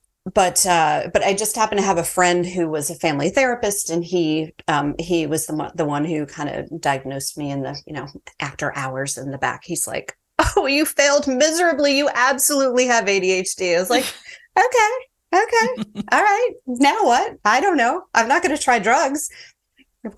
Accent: American